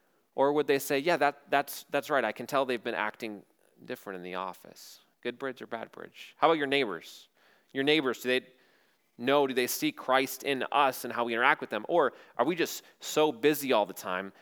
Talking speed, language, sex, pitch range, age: 225 wpm, English, male, 105-135 Hz, 30-49